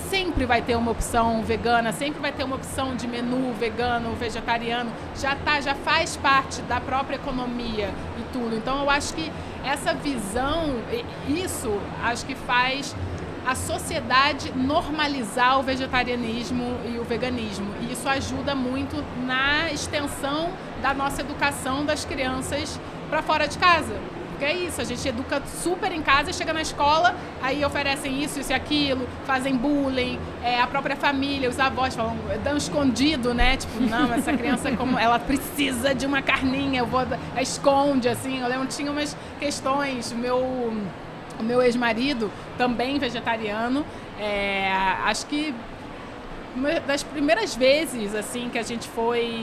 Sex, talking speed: female, 150 wpm